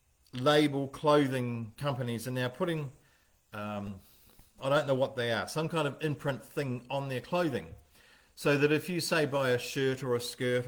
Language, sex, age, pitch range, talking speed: English, male, 50-69, 115-150 Hz, 180 wpm